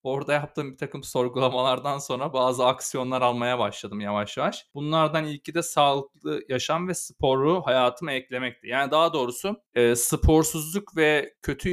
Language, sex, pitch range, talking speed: Turkish, male, 125-170 Hz, 145 wpm